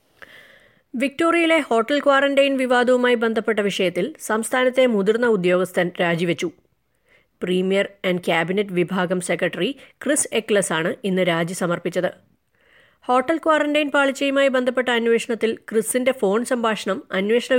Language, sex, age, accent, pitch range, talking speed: Malayalam, female, 20-39, native, 180-230 Hz, 100 wpm